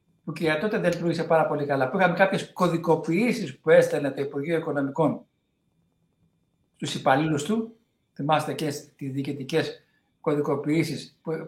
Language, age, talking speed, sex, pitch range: Greek, 60-79, 135 wpm, male, 150-205 Hz